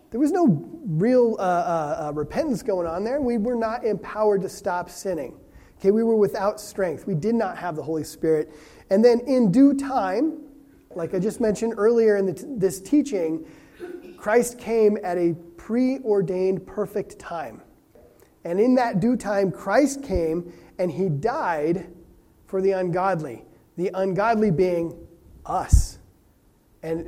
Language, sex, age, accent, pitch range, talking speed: English, male, 30-49, American, 170-225 Hz, 155 wpm